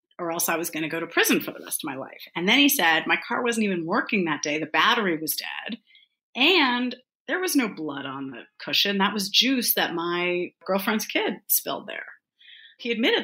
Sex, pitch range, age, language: female, 160-220 Hz, 30-49, English